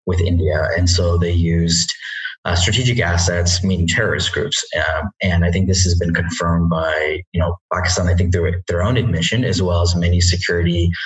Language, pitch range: English, 85-105 Hz